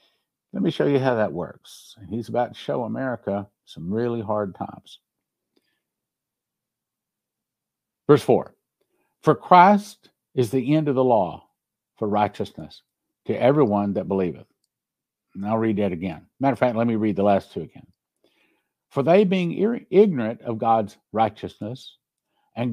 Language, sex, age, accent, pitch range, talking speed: English, male, 60-79, American, 115-140 Hz, 145 wpm